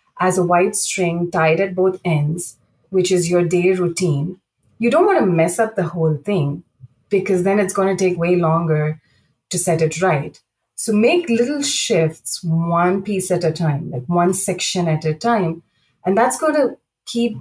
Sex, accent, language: female, Indian, English